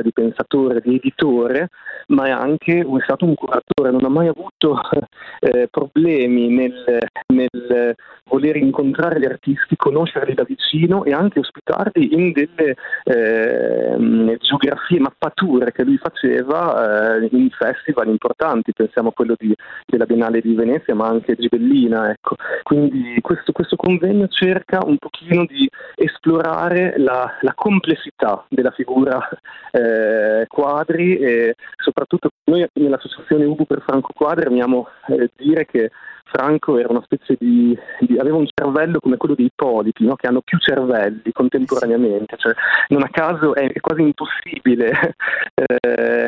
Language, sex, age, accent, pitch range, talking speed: Italian, male, 30-49, native, 120-160 Hz, 145 wpm